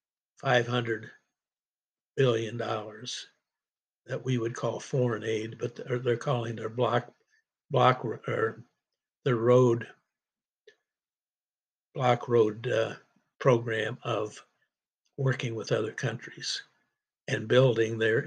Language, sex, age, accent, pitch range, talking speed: English, male, 60-79, American, 120-140 Hz, 100 wpm